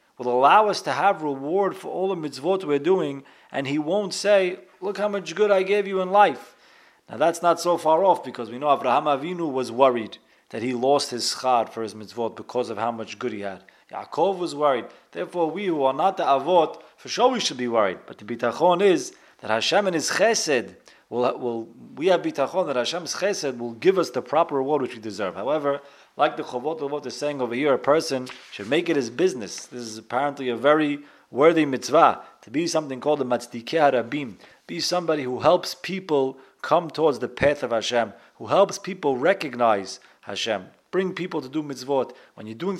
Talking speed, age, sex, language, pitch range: 200 wpm, 30-49, male, English, 125-180 Hz